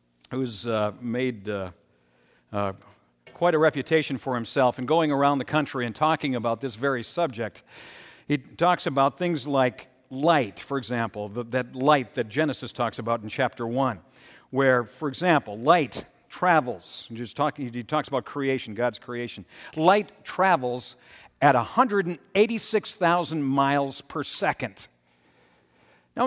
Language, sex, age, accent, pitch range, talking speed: English, male, 50-69, American, 120-200 Hz, 135 wpm